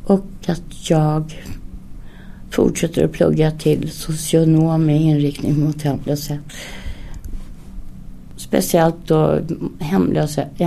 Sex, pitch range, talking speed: female, 130-155 Hz, 85 wpm